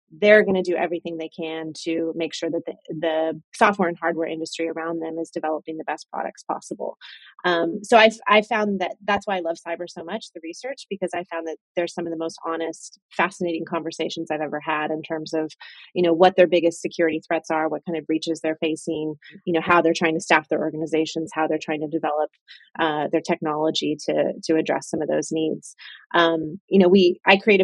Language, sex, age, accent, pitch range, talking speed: English, female, 30-49, American, 165-195 Hz, 220 wpm